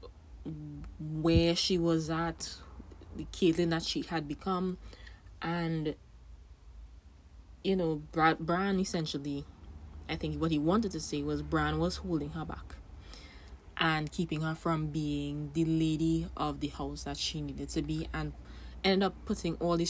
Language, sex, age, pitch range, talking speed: English, female, 20-39, 145-175 Hz, 150 wpm